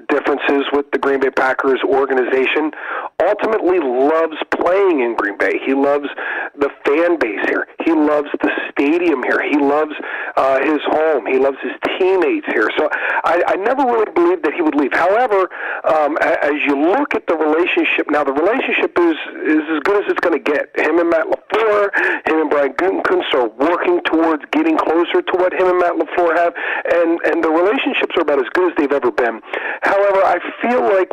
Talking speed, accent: 195 wpm, American